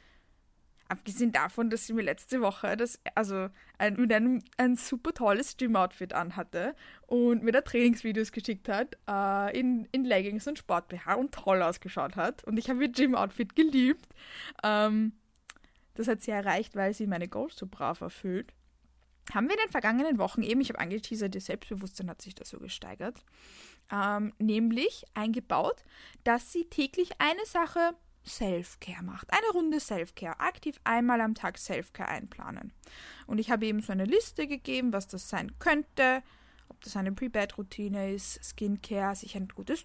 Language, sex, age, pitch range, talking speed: German, female, 20-39, 200-255 Hz, 165 wpm